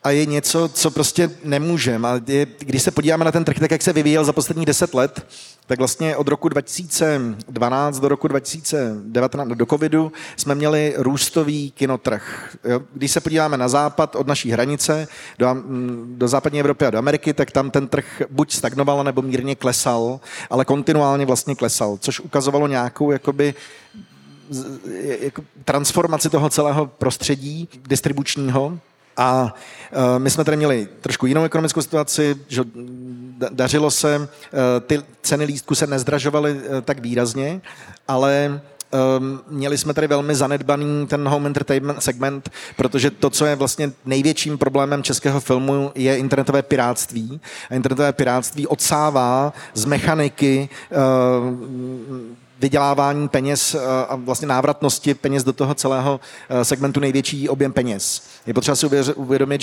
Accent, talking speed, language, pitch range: native, 135 wpm, Czech, 130-150 Hz